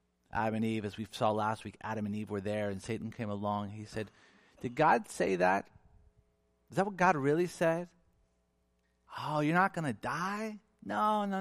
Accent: American